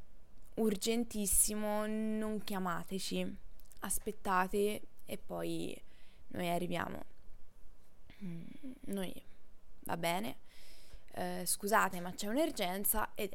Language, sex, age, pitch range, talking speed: Italian, female, 20-39, 180-215 Hz, 75 wpm